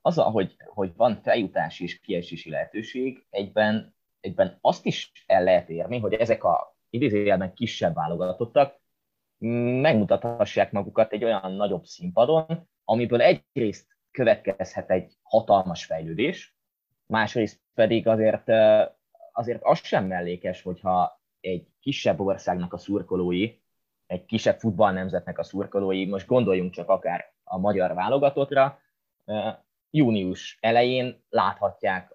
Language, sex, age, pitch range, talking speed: Hungarian, male, 20-39, 95-125 Hz, 115 wpm